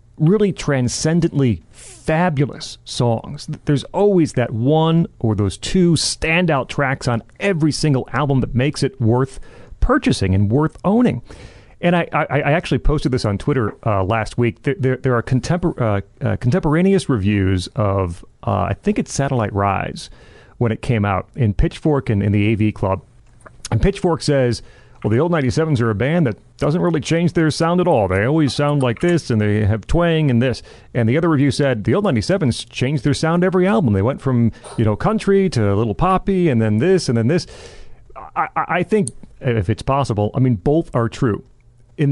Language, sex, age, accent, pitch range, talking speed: English, male, 40-59, American, 110-150 Hz, 190 wpm